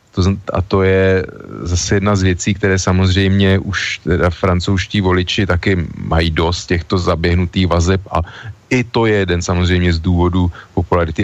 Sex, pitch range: male, 90-100 Hz